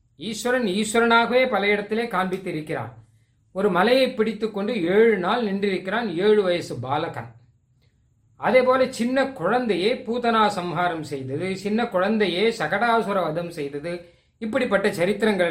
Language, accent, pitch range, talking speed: Tamil, native, 165-215 Hz, 110 wpm